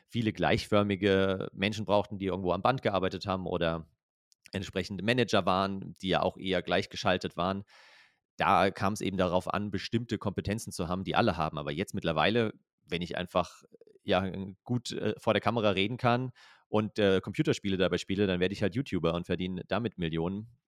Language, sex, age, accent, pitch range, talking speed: German, male, 30-49, German, 90-110 Hz, 175 wpm